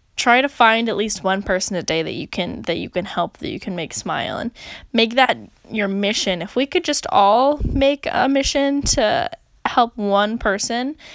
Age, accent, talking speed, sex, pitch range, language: 10-29, American, 205 wpm, female, 190-240 Hz, English